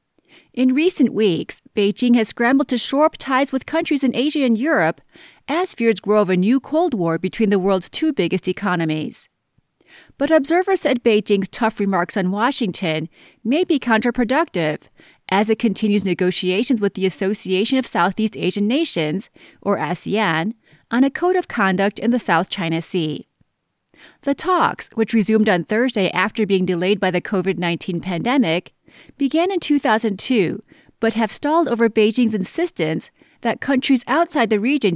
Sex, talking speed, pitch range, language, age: female, 155 wpm, 190-270 Hz, English, 30-49